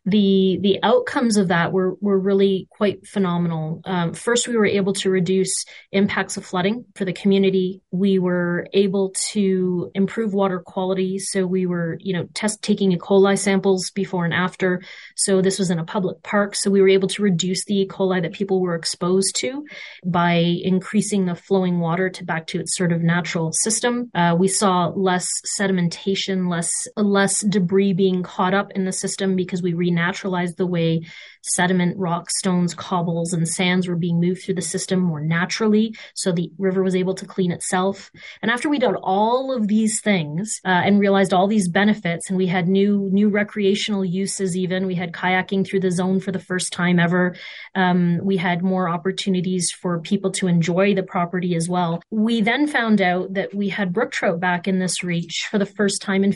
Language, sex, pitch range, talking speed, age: English, female, 180-200 Hz, 195 wpm, 30-49